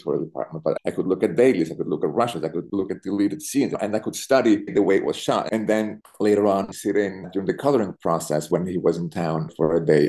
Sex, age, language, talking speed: male, 30-49, English, 270 wpm